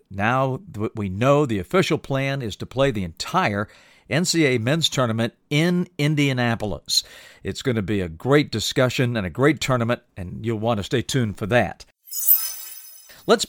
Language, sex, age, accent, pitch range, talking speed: English, male, 50-69, American, 110-140 Hz, 165 wpm